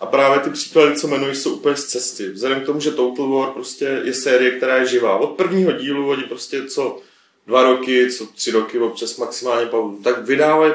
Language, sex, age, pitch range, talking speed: Czech, male, 30-49, 120-145 Hz, 210 wpm